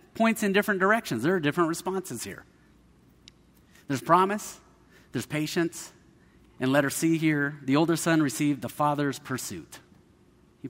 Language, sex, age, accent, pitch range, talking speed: English, male, 30-49, American, 120-170 Hz, 140 wpm